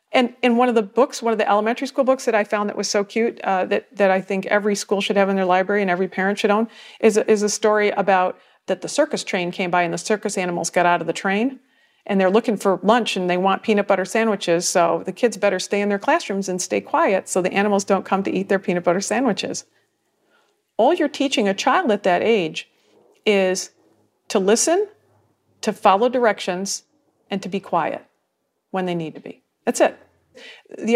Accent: American